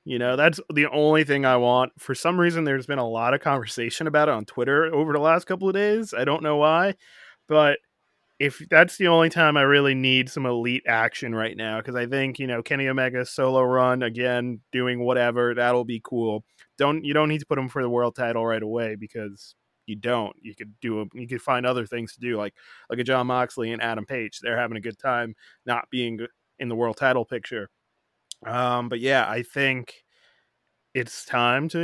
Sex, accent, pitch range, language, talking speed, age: male, American, 120-145 Hz, English, 215 wpm, 20-39